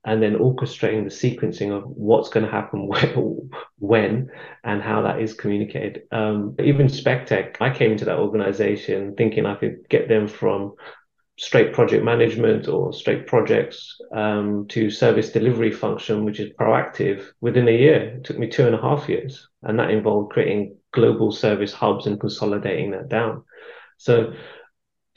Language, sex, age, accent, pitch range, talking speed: English, male, 30-49, British, 105-155 Hz, 160 wpm